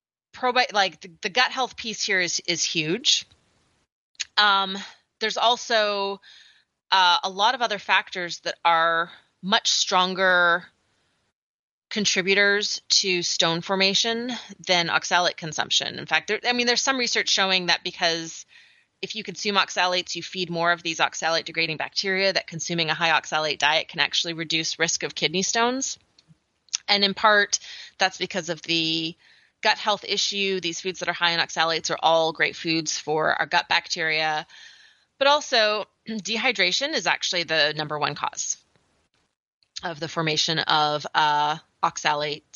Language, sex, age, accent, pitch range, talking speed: English, female, 30-49, American, 165-210 Hz, 150 wpm